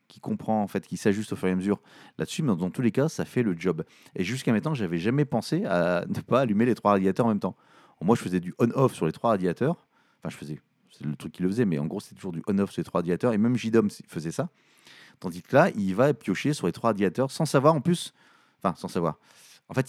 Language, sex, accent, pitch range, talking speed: French, male, French, 95-130 Hz, 275 wpm